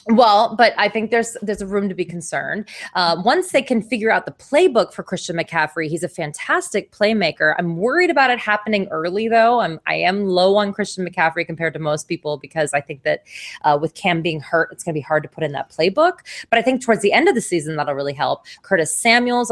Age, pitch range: 20-39, 170-245 Hz